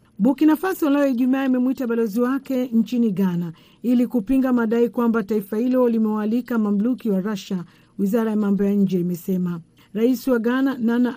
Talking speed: 155 wpm